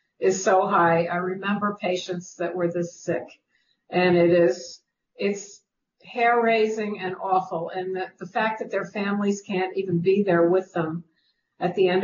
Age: 50-69